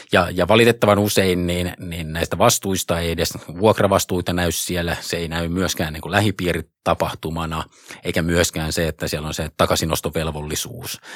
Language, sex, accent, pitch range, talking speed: Finnish, male, native, 80-90 Hz, 150 wpm